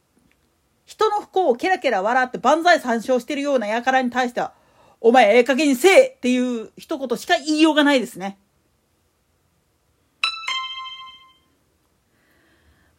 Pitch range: 240-370 Hz